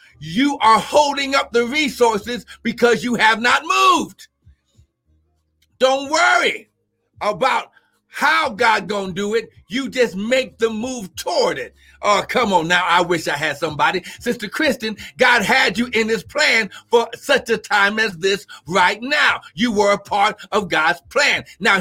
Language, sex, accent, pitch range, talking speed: English, male, American, 190-240 Hz, 165 wpm